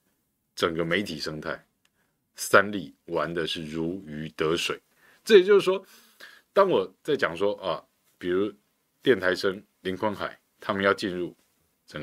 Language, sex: Chinese, male